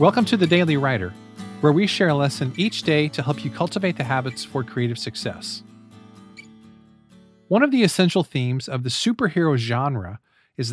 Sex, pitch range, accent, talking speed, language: male, 125-175 Hz, American, 175 wpm, English